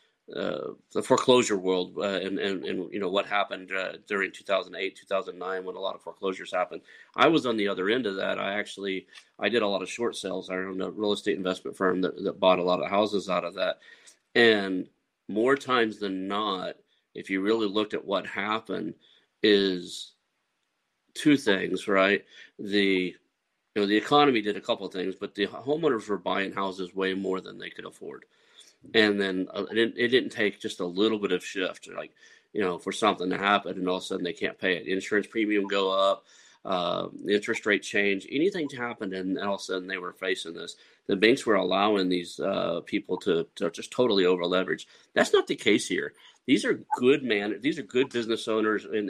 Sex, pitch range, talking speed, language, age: male, 95-110 Hz, 210 wpm, English, 40-59